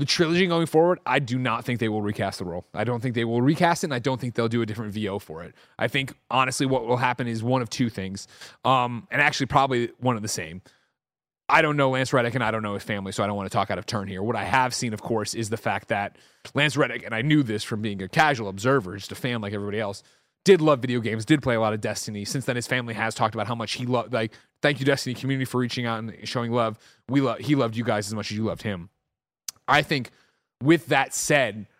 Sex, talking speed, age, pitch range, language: male, 275 wpm, 30-49, 110-130 Hz, English